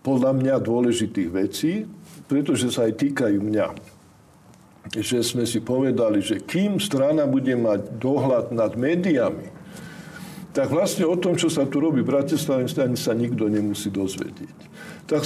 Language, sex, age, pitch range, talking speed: Slovak, male, 50-69, 115-155 Hz, 145 wpm